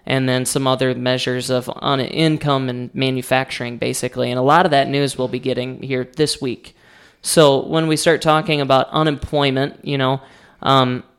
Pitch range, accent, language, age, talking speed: 130-145 Hz, American, English, 20-39, 180 wpm